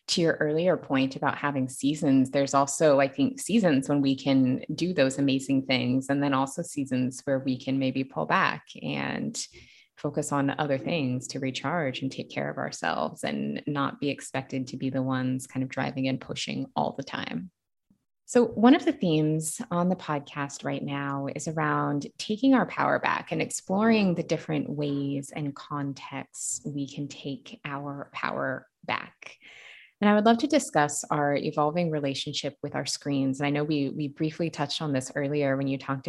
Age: 20-39